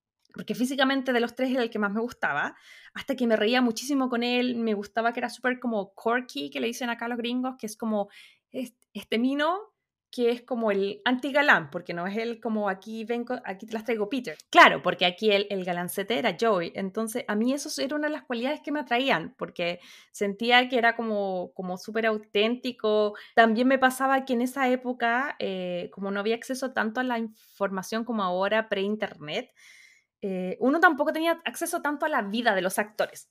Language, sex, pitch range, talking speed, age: Spanish, female, 210-275 Hz, 205 wpm, 20-39